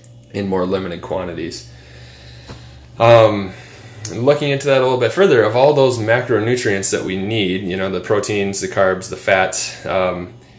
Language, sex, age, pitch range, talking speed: English, male, 20-39, 90-120 Hz, 160 wpm